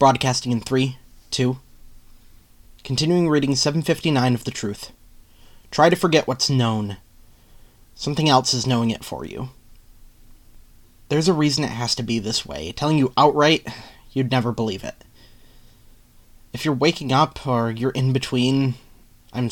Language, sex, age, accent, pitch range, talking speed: English, male, 30-49, American, 110-140 Hz, 145 wpm